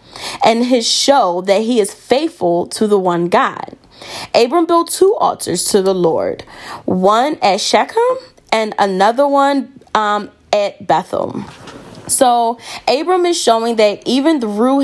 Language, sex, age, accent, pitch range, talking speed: English, female, 10-29, American, 190-280 Hz, 140 wpm